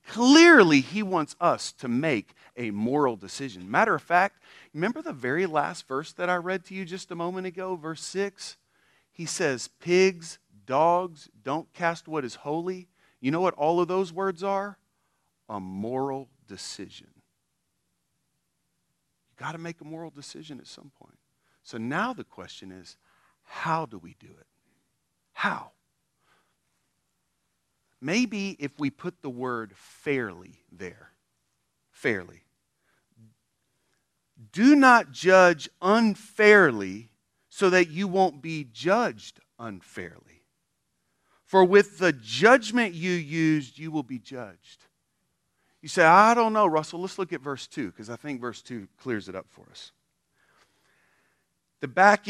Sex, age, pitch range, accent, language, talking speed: male, 40-59, 135-190 Hz, American, English, 140 wpm